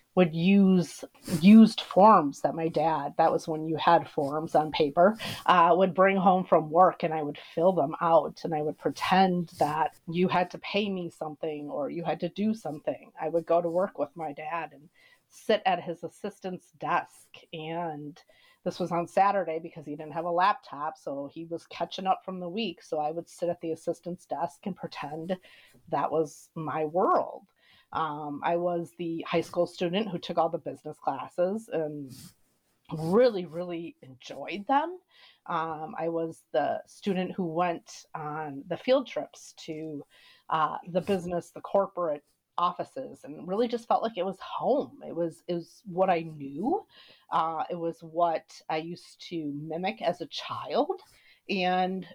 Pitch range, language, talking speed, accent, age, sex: 160-190 Hz, English, 175 wpm, American, 30-49, female